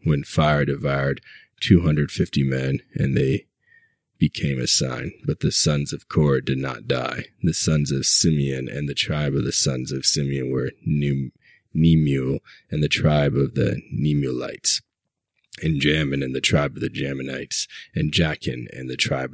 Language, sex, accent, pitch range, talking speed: English, male, American, 70-75 Hz, 160 wpm